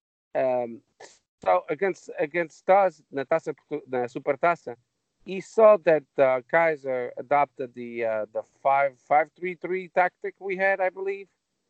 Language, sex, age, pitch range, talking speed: English, male, 50-69, 130-190 Hz, 130 wpm